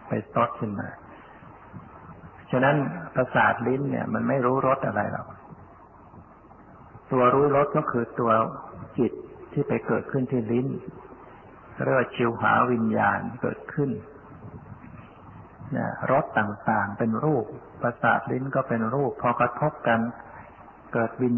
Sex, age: male, 60-79